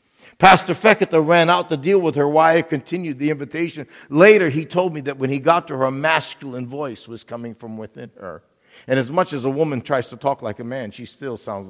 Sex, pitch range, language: male, 120-170 Hz, English